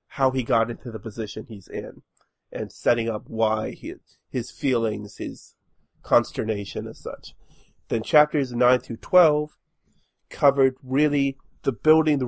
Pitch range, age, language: 115-140 Hz, 40-59, English